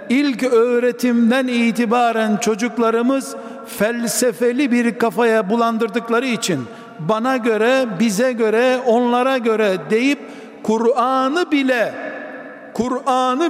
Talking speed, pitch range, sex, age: 85 wpm, 230-265 Hz, male, 60-79